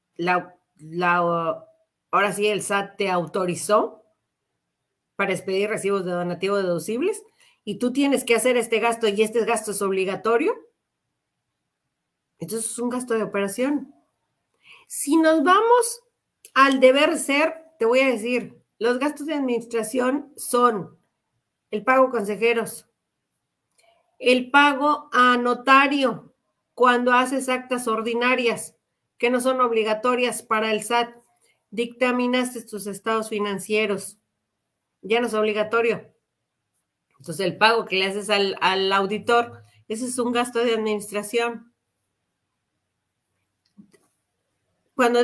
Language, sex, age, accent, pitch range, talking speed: Spanish, female, 40-59, Mexican, 215-265 Hz, 120 wpm